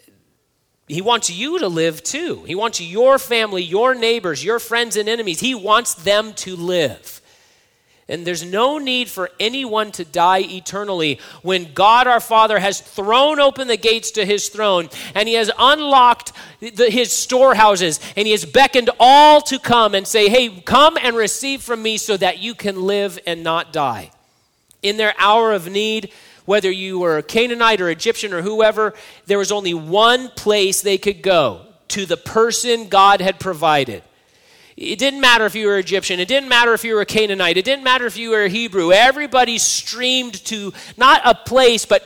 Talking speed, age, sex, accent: 185 wpm, 40-59, male, American